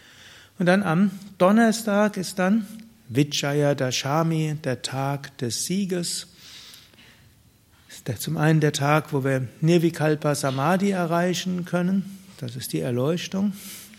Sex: male